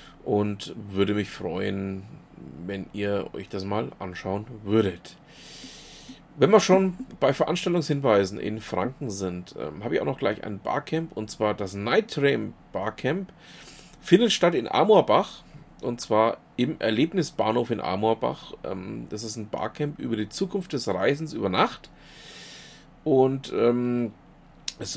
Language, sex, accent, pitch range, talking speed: German, male, German, 100-150 Hz, 140 wpm